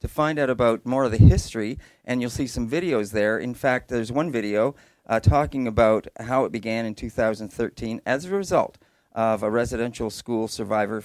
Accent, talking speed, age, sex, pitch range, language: American, 190 wpm, 40-59, male, 110-130 Hz, English